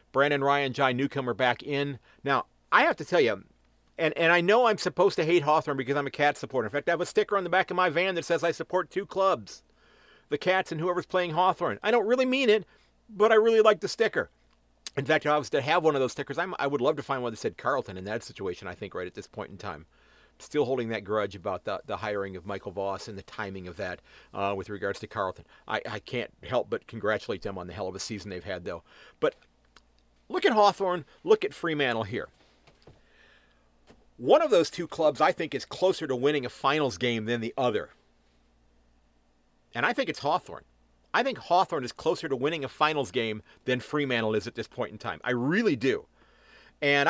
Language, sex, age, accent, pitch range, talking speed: English, male, 50-69, American, 110-175 Hz, 235 wpm